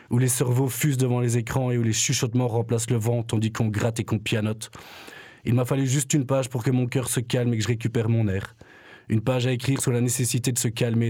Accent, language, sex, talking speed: French, French, male, 260 wpm